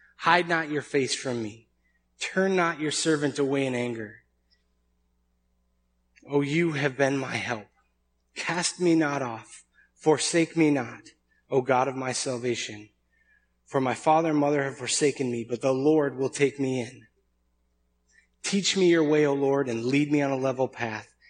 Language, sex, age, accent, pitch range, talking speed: English, male, 20-39, American, 115-145 Hz, 175 wpm